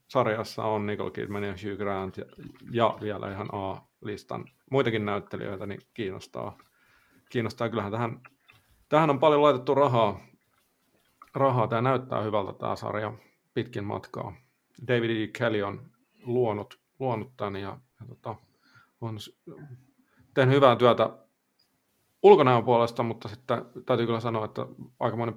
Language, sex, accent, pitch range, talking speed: Finnish, male, native, 105-125 Hz, 130 wpm